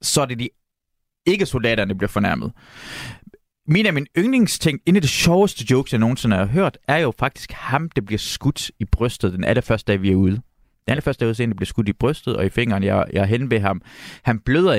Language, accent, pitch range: Danish, native, 105-145 Hz